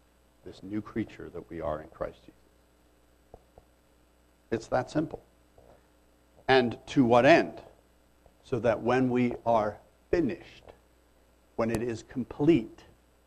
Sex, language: male, English